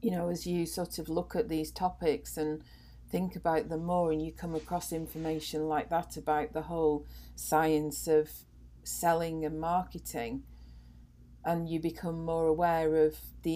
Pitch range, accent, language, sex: 145-165 Hz, British, English, female